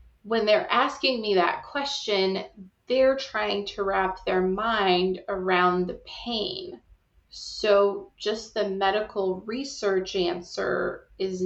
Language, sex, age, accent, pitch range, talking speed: English, female, 20-39, American, 185-230 Hz, 115 wpm